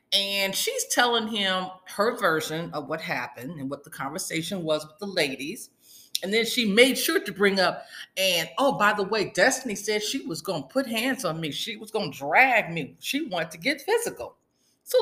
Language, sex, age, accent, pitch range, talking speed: English, female, 40-59, American, 175-250 Hz, 210 wpm